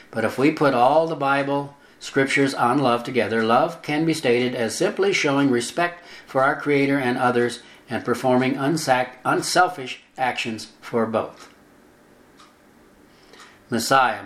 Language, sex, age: English, male, 60-79